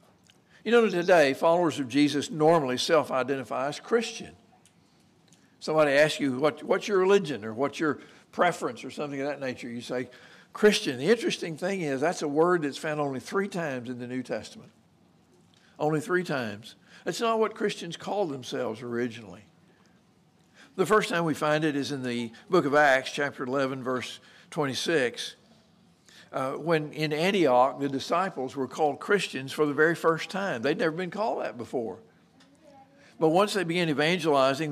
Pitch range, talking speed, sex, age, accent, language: 135-180 Hz, 165 wpm, male, 60-79, American, English